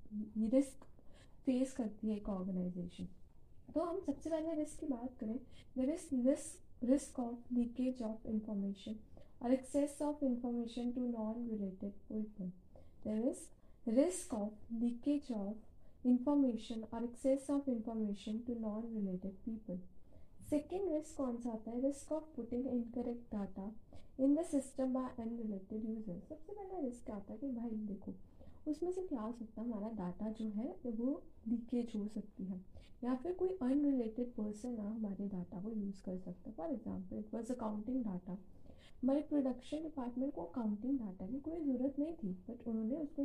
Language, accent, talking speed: Hindi, native, 115 wpm